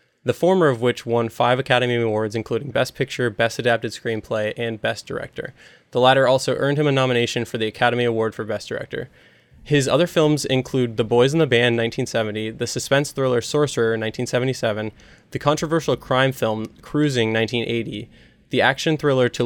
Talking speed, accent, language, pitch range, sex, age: 175 wpm, American, English, 115-135 Hz, male, 20-39